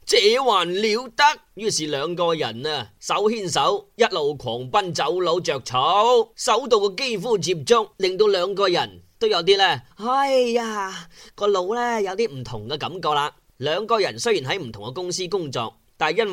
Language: Chinese